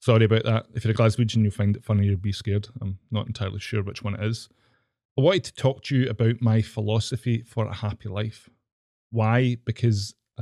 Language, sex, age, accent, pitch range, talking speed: English, male, 20-39, British, 110-120 Hz, 215 wpm